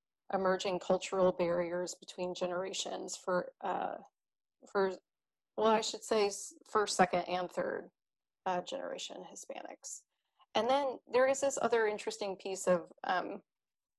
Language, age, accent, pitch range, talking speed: English, 30-49, American, 180-205 Hz, 125 wpm